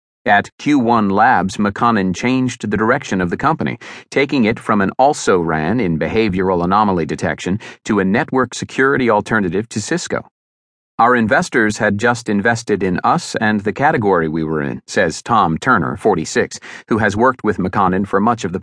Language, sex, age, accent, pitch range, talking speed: English, male, 40-59, American, 95-120 Hz, 170 wpm